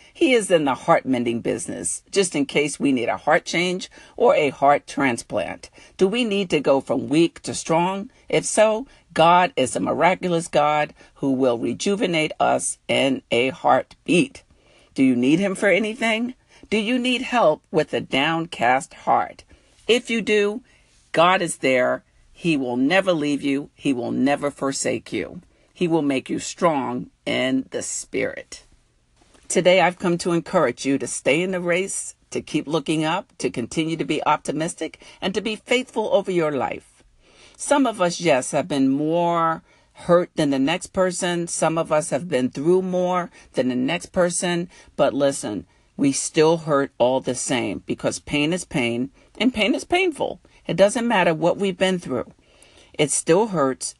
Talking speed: 170 wpm